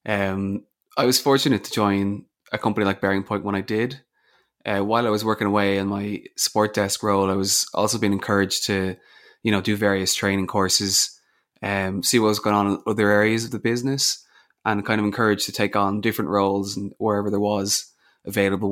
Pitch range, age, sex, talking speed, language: 100-110 Hz, 20-39, male, 205 wpm, English